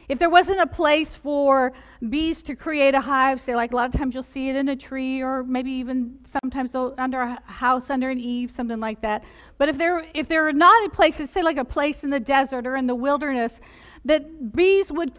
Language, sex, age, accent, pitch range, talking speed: English, female, 50-69, American, 255-310 Hz, 235 wpm